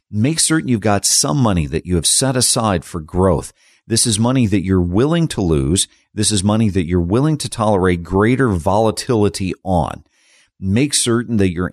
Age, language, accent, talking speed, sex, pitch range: 50-69, English, American, 185 wpm, male, 85-115 Hz